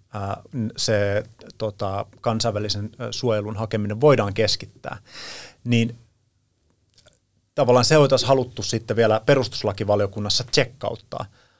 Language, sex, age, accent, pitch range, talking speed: Finnish, male, 30-49, native, 105-135 Hz, 85 wpm